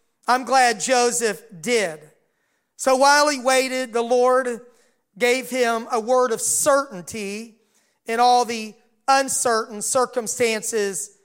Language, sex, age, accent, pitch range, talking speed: English, male, 40-59, American, 205-255 Hz, 110 wpm